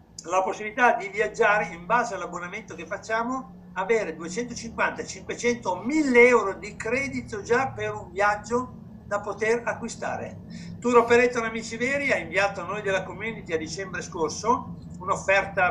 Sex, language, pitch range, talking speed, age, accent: male, Italian, 170-235 Hz, 140 wpm, 60-79, native